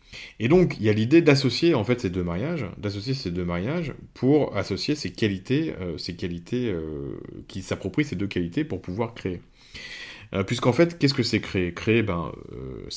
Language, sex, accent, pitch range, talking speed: French, male, French, 85-110 Hz, 190 wpm